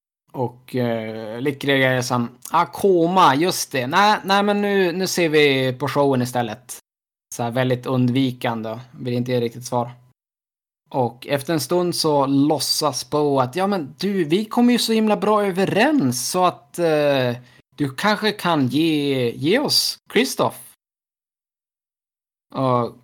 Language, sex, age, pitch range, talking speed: Swedish, male, 20-39, 125-170 Hz, 145 wpm